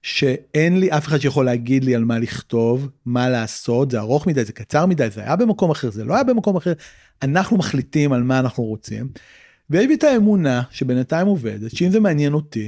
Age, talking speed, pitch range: 40-59, 205 wpm, 130-190 Hz